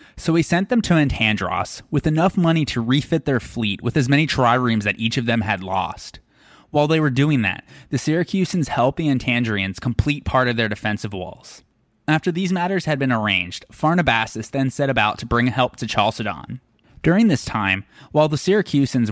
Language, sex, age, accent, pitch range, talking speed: English, male, 20-39, American, 110-150 Hz, 190 wpm